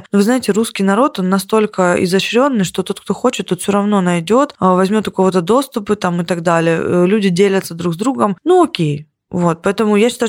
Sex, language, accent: female, Russian, native